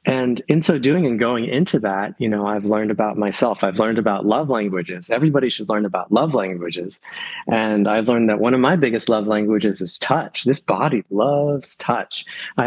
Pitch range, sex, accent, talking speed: 105-130 Hz, male, American, 200 wpm